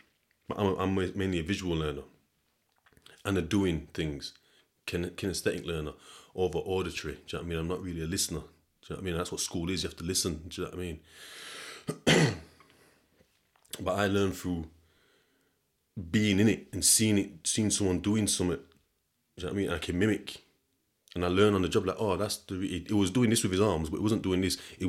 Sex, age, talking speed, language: male, 30-49, 230 wpm, English